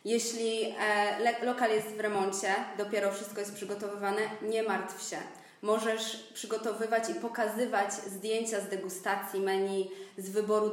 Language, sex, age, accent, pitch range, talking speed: Polish, female, 20-39, native, 200-235 Hz, 125 wpm